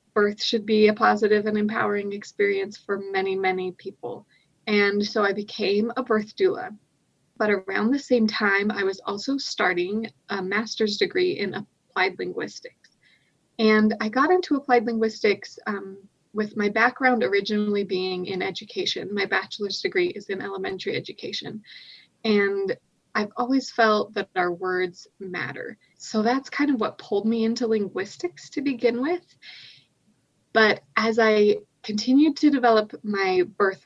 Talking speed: 145 wpm